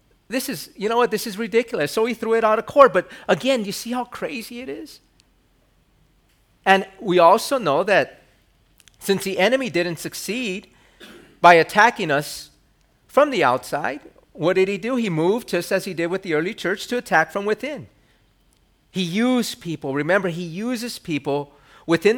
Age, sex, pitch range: 40-59, male, 150-215 Hz